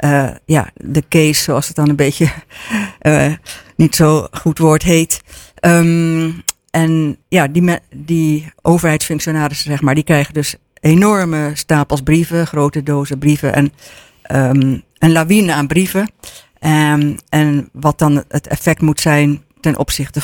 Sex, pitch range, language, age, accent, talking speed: female, 140-155 Hz, Dutch, 60-79, Dutch, 145 wpm